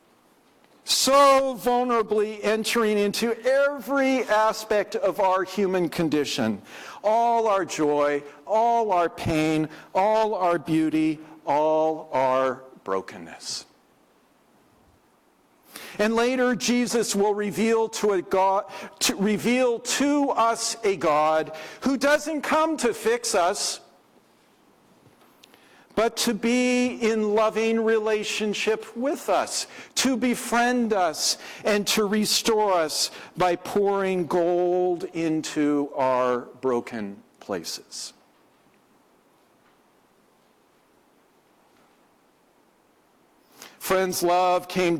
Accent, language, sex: American, English, male